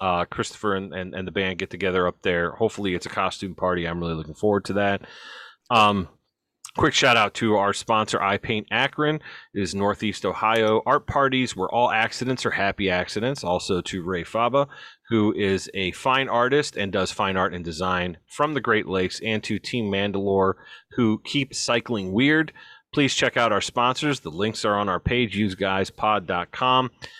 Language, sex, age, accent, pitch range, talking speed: English, male, 30-49, American, 100-140 Hz, 180 wpm